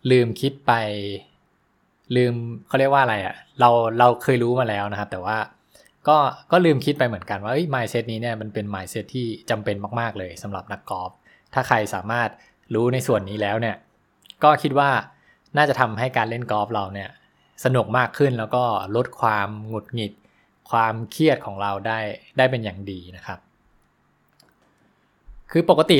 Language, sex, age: English, male, 20-39